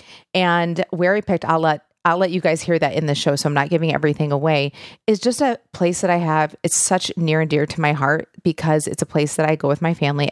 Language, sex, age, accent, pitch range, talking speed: English, female, 40-59, American, 160-200 Hz, 265 wpm